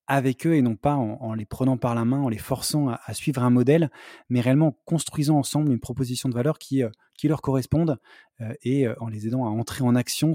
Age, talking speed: 20-39, 250 wpm